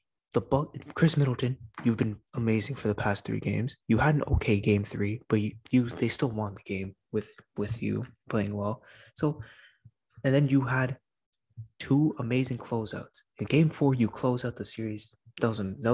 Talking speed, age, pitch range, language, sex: 190 wpm, 20-39, 105-125 Hz, English, male